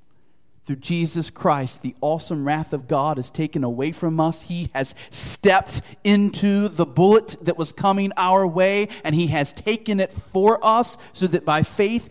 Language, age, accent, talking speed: English, 40-59, American, 175 wpm